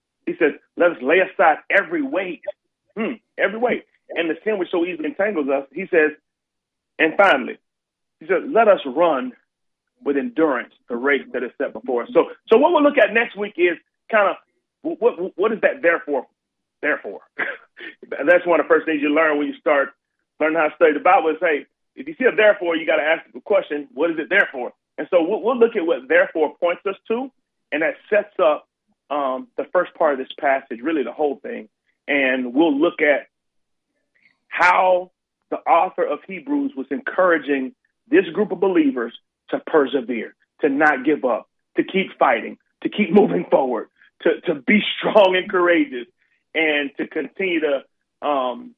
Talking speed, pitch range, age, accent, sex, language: 190 wpm, 155-250 Hz, 40-59, American, male, English